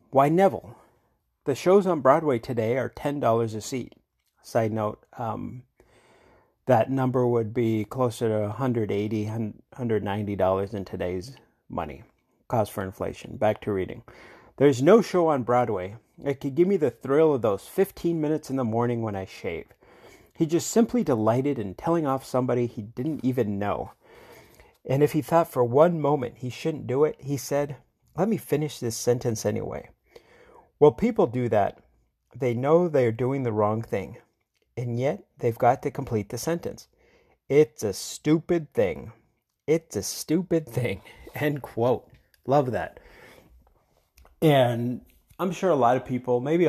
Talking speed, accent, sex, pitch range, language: 155 wpm, American, male, 110-145 Hz, English